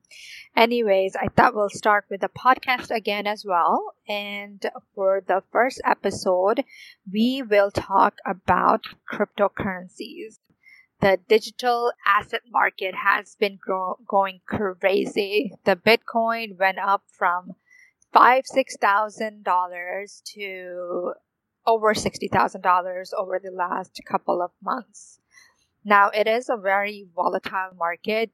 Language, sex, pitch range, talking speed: English, female, 195-230 Hz, 120 wpm